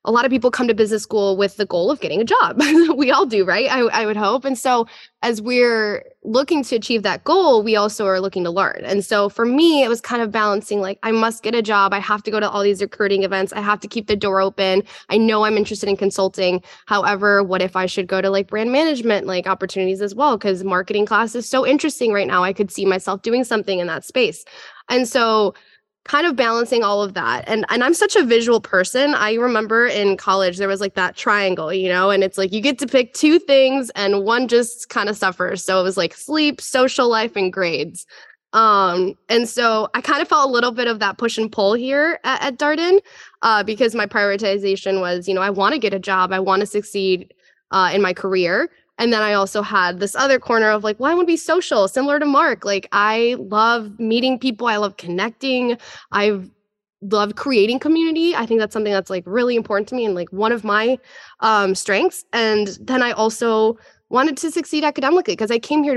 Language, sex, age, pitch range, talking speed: English, female, 10-29, 195-250 Hz, 235 wpm